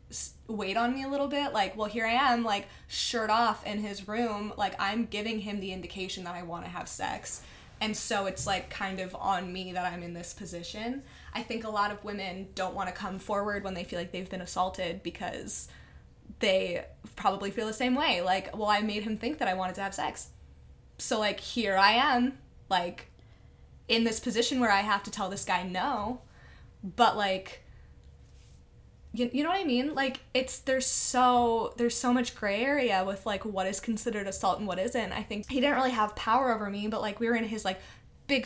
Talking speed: 215 wpm